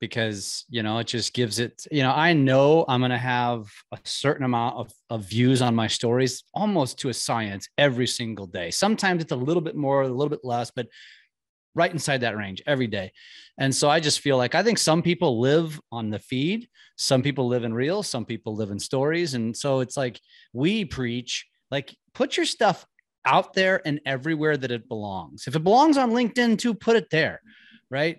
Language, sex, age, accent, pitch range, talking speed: English, male, 30-49, American, 120-160 Hz, 210 wpm